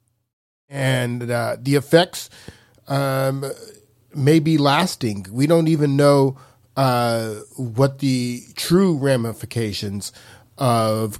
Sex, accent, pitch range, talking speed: male, American, 115-140 Hz, 95 wpm